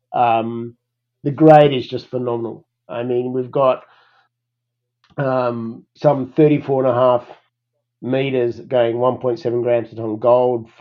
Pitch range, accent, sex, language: 120-135 Hz, Australian, male, English